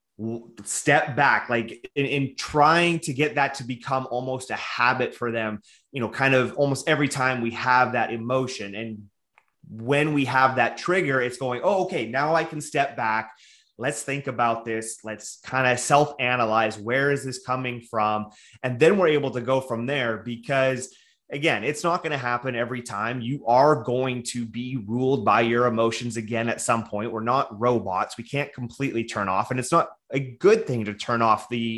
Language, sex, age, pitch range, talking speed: English, male, 30-49, 115-140 Hz, 195 wpm